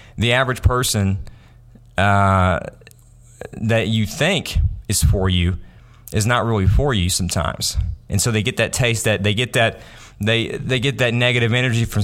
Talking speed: 165 wpm